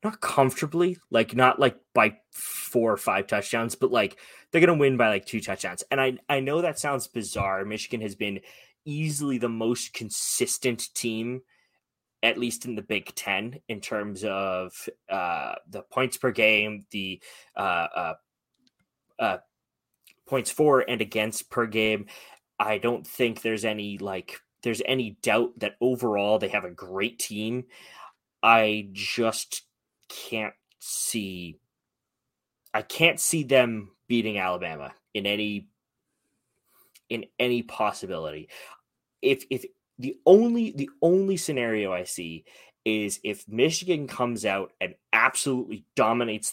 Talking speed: 135 wpm